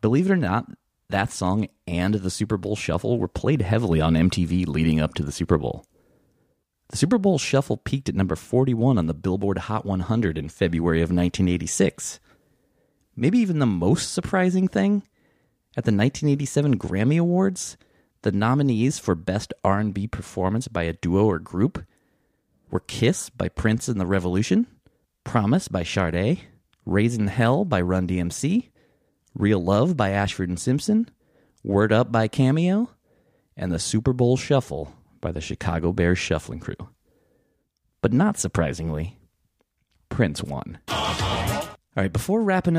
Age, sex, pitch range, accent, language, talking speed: 30-49, male, 85-130 Hz, American, English, 145 wpm